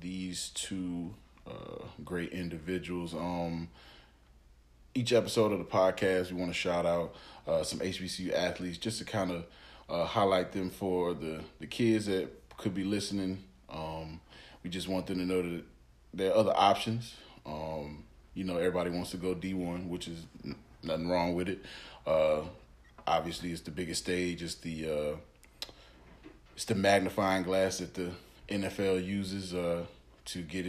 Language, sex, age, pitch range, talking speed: English, male, 30-49, 85-95 Hz, 160 wpm